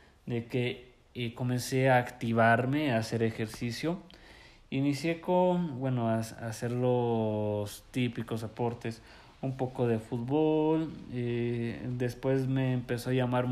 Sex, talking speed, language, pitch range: male, 125 wpm, Spanish, 115-130 Hz